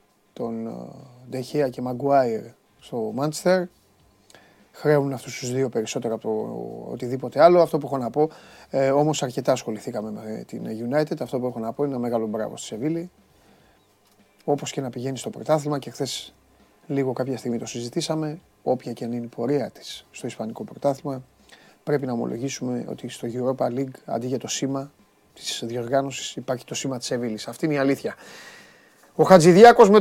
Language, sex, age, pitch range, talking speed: Greek, male, 30-49, 125-175 Hz, 170 wpm